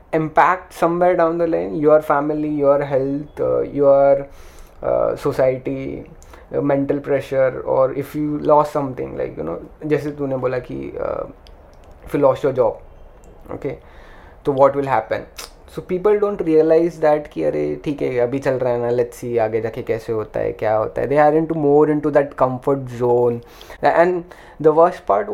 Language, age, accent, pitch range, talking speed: English, 20-39, Indian, 130-155 Hz, 155 wpm